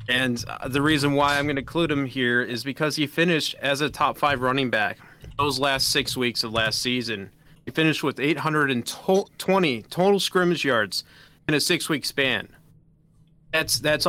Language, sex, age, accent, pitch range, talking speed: English, male, 30-49, American, 120-150 Hz, 170 wpm